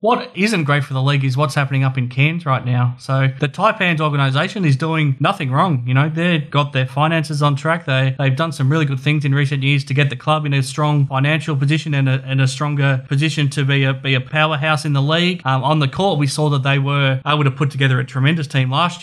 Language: English